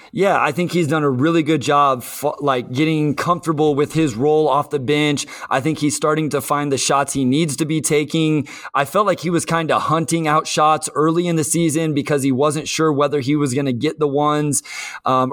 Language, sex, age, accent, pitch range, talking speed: English, male, 20-39, American, 145-170 Hz, 230 wpm